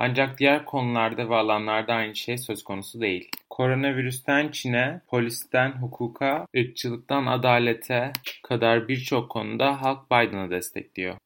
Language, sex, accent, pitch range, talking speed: Turkish, male, native, 115-135 Hz, 115 wpm